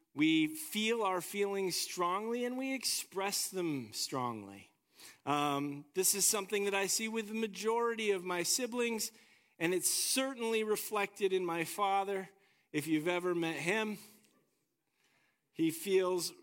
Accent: American